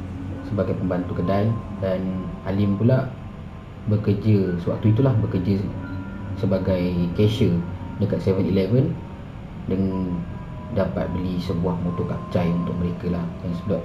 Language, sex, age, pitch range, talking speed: Malay, male, 30-49, 95-115 Hz, 110 wpm